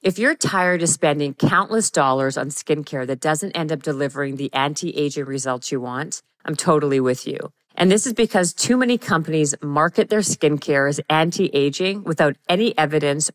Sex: female